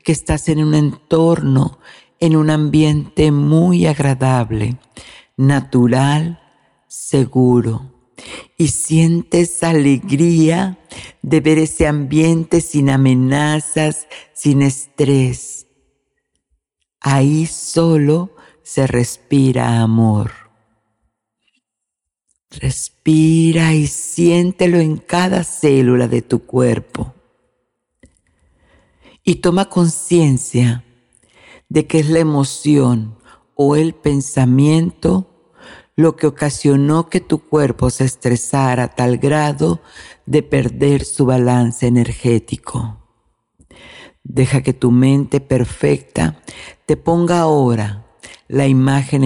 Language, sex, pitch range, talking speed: Spanish, female, 125-155 Hz, 90 wpm